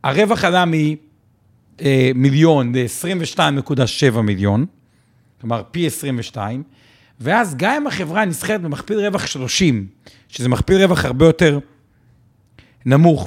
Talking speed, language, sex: 100 wpm, Hebrew, male